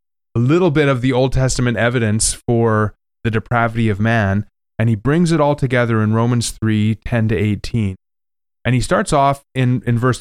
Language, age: English, 20-39